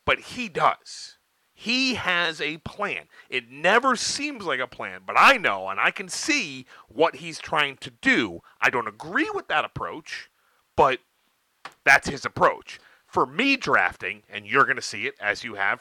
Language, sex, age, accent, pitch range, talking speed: English, male, 40-59, American, 125-185 Hz, 180 wpm